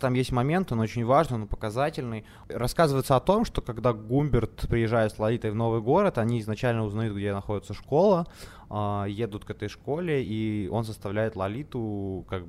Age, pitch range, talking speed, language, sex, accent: 20-39, 100-125 Hz, 170 wpm, Ukrainian, male, native